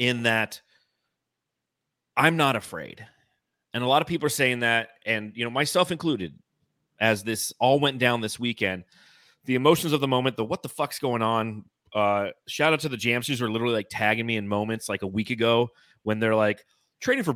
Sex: male